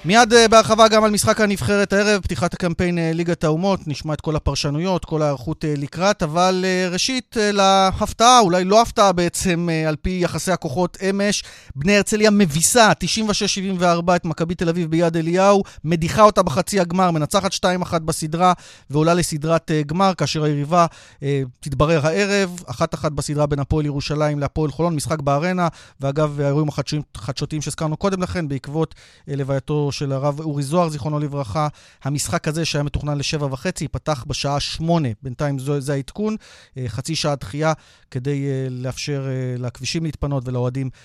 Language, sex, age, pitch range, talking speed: Hebrew, male, 30-49, 140-185 Hz, 135 wpm